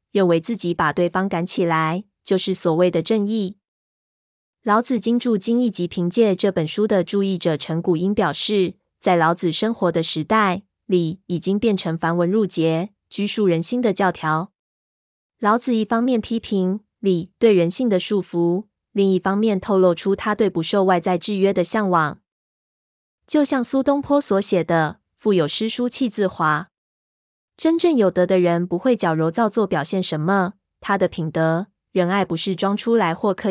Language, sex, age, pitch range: Chinese, female, 20-39, 175-215 Hz